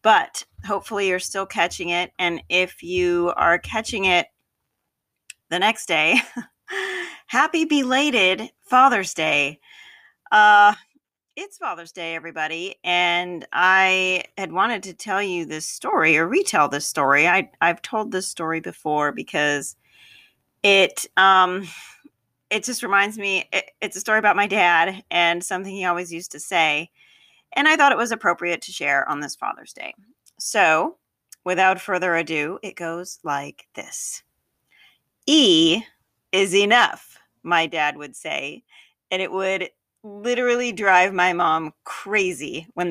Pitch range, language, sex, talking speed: 170-240 Hz, English, female, 140 wpm